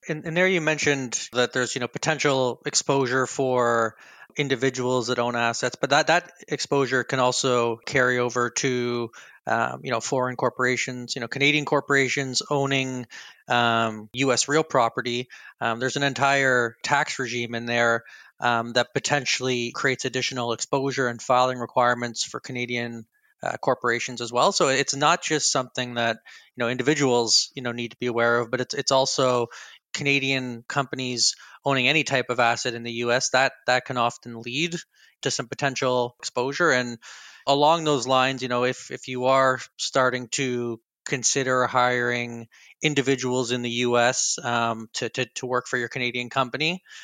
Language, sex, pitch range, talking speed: English, male, 120-135 Hz, 165 wpm